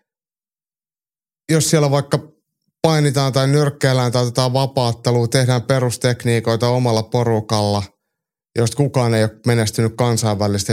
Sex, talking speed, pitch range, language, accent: male, 105 wpm, 110-140 Hz, Finnish, native